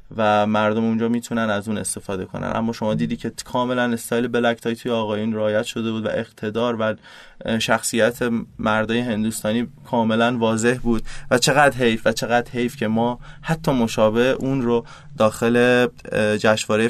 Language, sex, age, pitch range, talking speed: Persian, male, 20-39, 110-130 Hz, 155 wpm